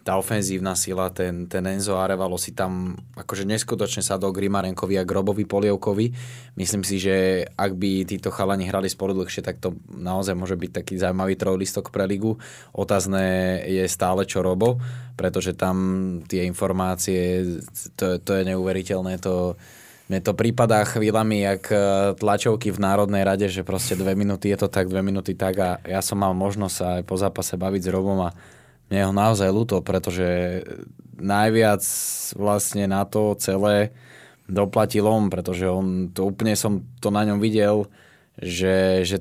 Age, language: 20-39, Slovak